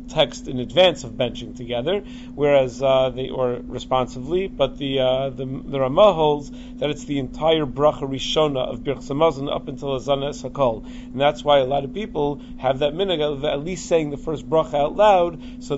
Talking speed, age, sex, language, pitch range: 190 wpm, 40-59, male, English, 135-170 Hz